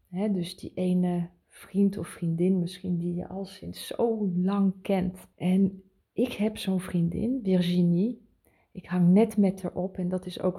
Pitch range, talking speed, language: 180-205 Hz, 175 wpm, Dutch